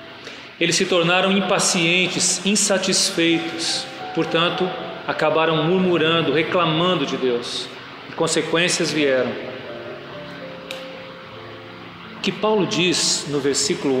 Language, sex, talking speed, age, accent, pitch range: Portuguese, male, 85 wpm, 40-59, Brazilian, 155-190 Hz